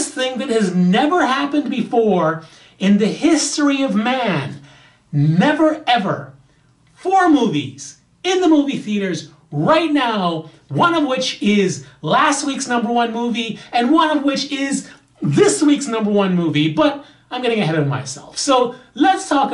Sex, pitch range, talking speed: male, 150-250 Hz, 150 wpm